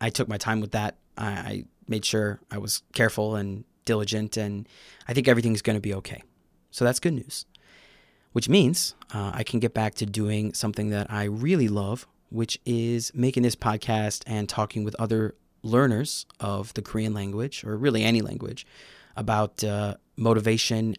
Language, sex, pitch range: English, male, 105-120 Hz